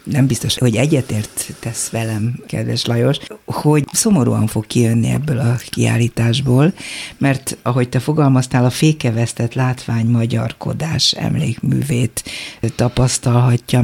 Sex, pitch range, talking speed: female, 120-155 Hz, 110 wpm